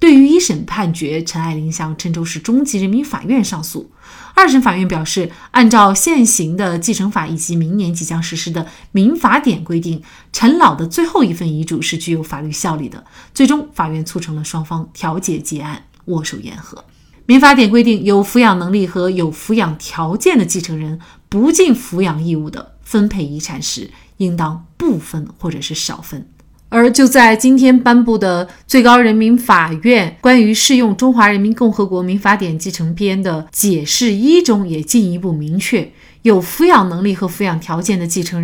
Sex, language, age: female, Chinese, 30-49